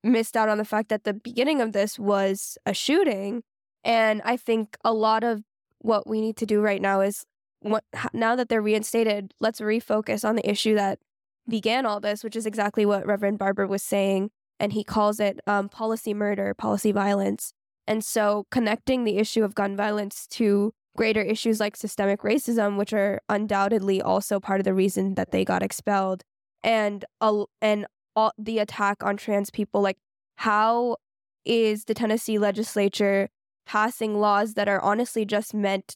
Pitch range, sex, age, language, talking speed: 205-225 Hz, female, 10-29, English, 175 wpm